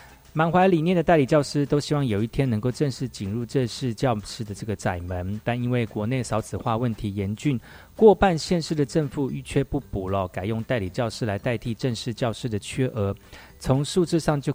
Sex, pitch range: male, 105-145 Hz